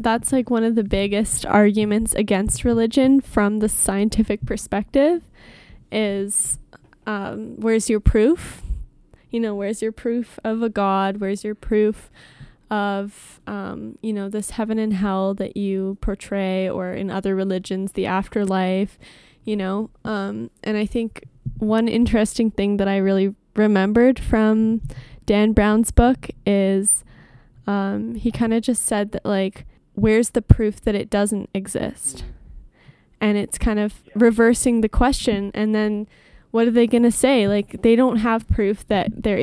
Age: 10-29